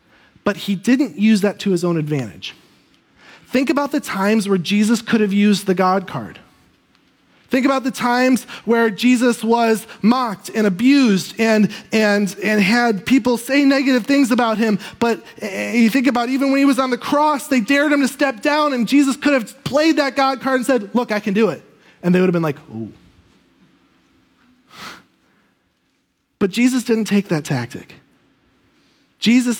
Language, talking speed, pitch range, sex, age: English, 175 wpm, 190-265 Hz, male, 30-49